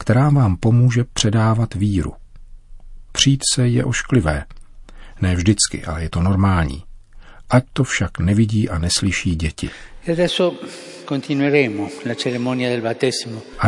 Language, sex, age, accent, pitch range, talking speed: Czech, male, 50-69, native, 90-120 Hz, 100 wpm